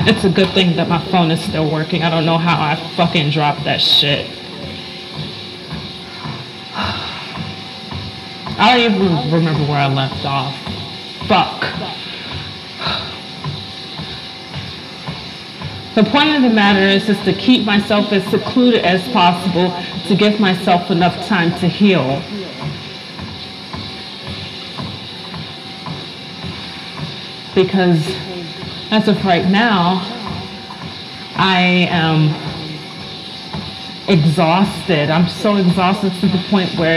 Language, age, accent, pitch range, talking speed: English, 30-49, American, 170-205 Hz, 105 wpm